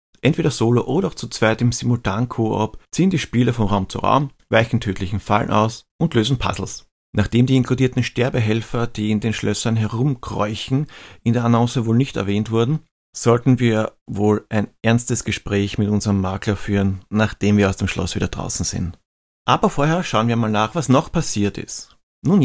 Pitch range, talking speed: 105-140 Hz, 180 wpm